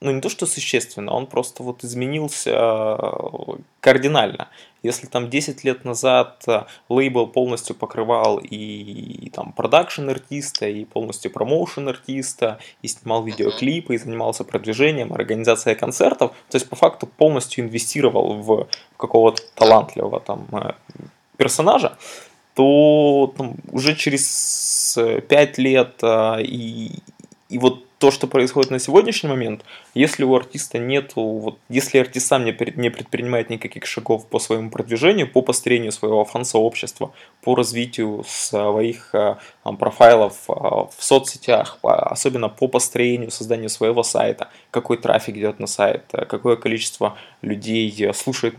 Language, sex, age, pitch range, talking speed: Russian, male, 20-39, 110-135 Hz, 130 wpm